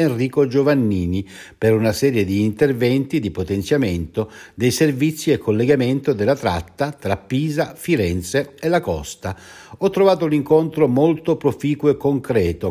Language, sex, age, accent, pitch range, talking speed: Italian, male, 60-79, native, 105-150 Hz, 130 wpm